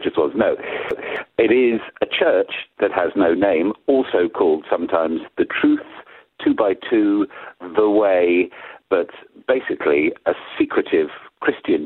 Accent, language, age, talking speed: British, English, 50-69, 130 wpm